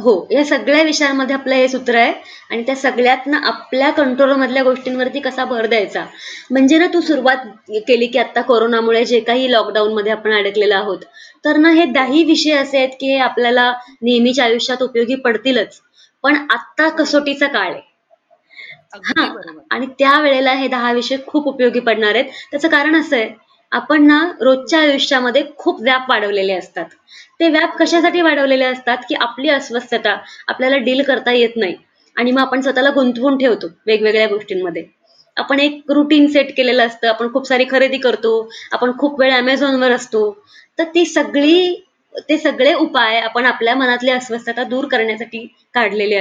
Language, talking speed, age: Marathi, 160 wpm, 20-39